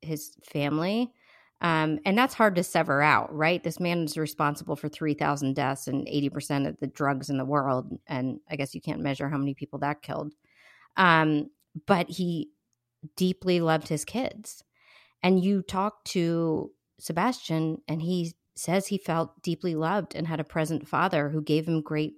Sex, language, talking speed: female, English, 175 wpm